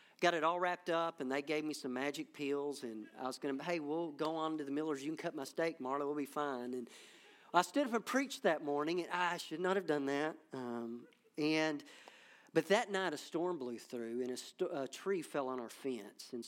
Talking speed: 245 wpm